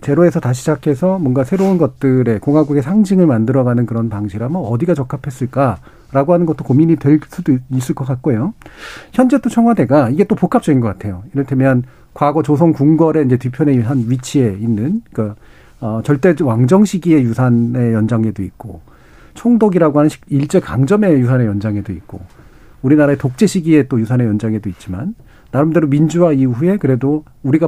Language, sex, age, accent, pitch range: Korean, male, 40-59, native, 125-175 Hz